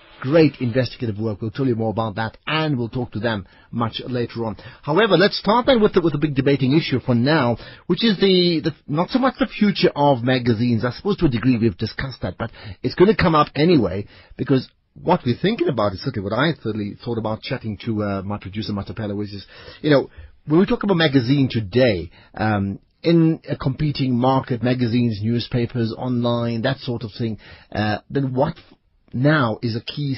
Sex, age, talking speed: male, 30-49, 205 wpm